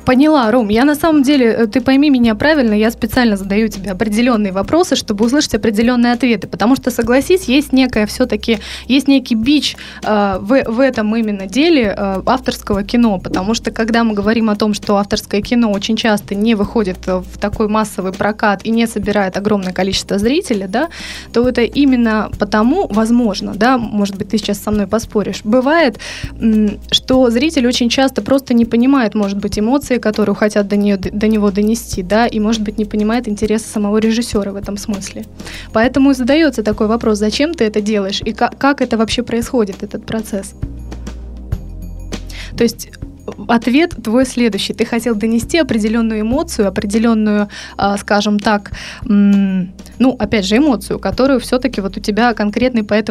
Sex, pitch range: female, 205-245 Hz